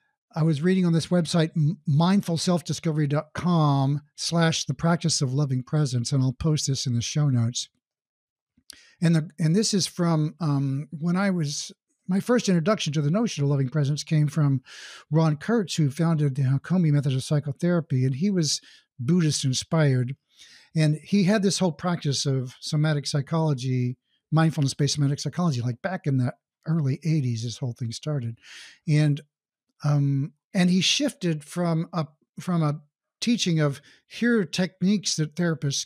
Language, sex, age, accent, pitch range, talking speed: English, male, 60-79, American, 140-180 Hz, 155 wpm